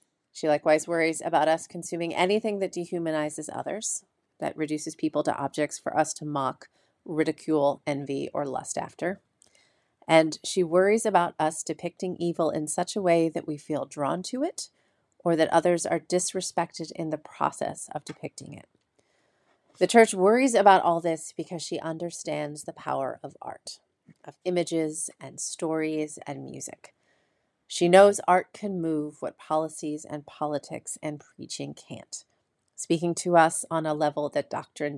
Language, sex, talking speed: English, female, 155 wpm